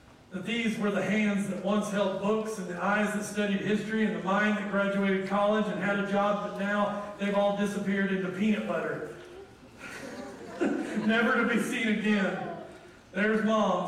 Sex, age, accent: male, 40-59, American